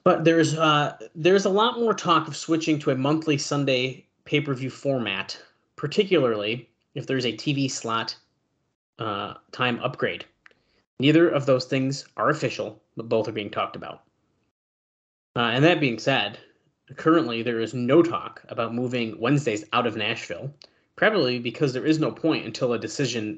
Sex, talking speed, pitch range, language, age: male, 160 wpm, 115-145 Hz, English, 30-49